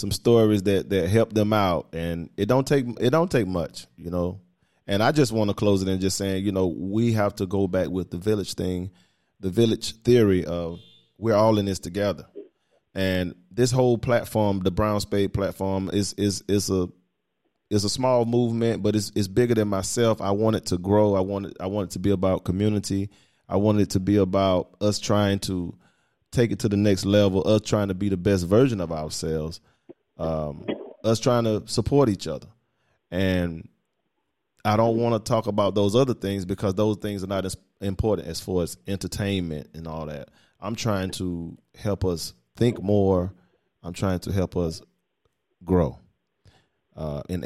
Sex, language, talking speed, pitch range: male, English, 195 wpm, 90-110 Hz